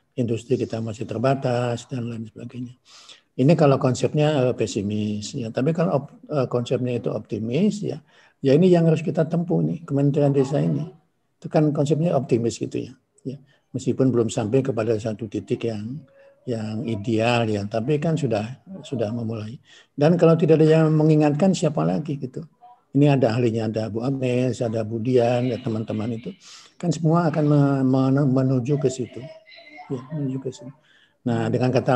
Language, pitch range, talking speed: Indonesian, 115-145 Hz, 150 wpm